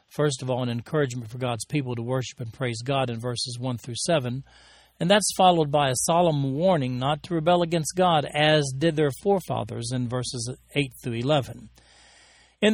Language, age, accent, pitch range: English, 40-59, American, 125-165 Hz